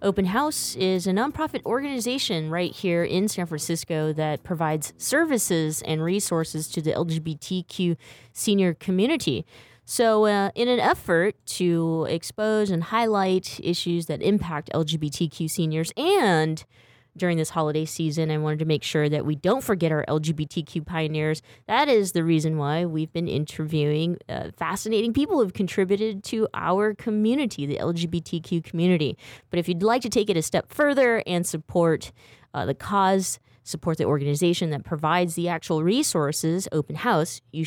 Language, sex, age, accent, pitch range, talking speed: English, female, 20-39, American, 155-190 Hz, 155 wpm